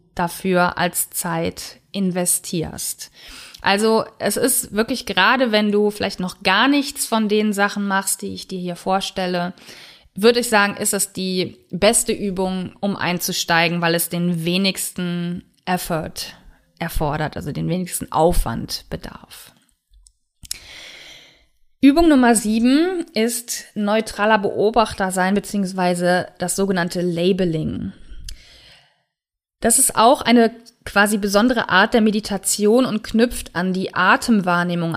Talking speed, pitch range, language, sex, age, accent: 120 wpm, 180-225 Hz, German, female, 20-39, German